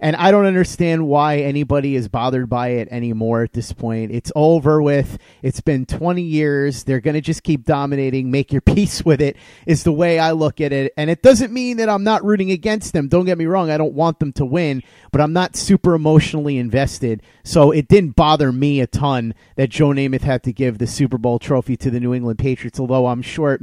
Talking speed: 230 wpm